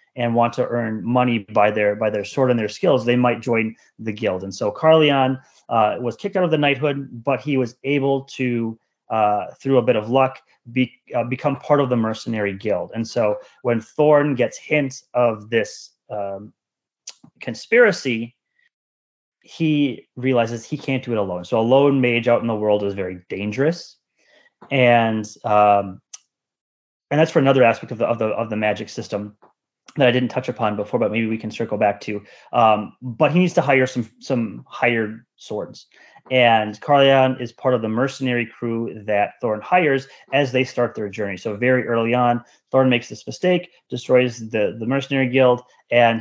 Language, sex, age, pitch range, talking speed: English, male, 30-49, 110-135 Hz, 185 wpm